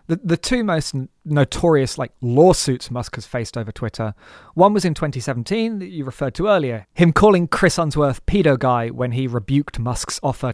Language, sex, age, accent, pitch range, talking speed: English, male, 30-49, British, 130-170 Hz, 190 wpm